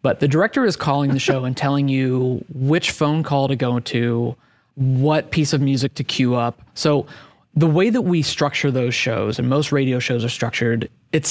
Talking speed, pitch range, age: 200 wpm, 125-145 Hz, 20-39